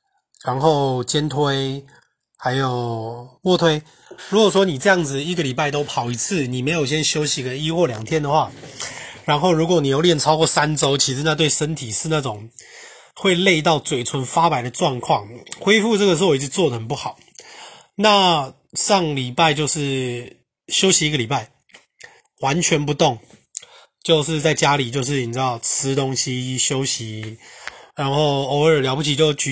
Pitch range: 130-165 Hz